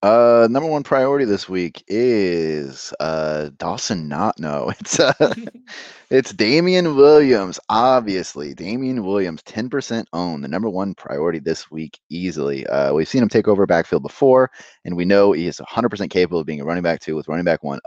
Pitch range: 80-115 Hz